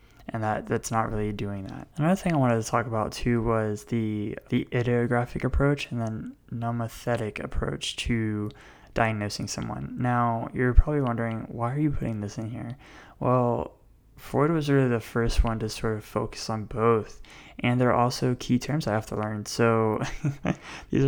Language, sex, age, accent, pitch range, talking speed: English, male, 20-39, American, 110-125 Hz, 175 wpm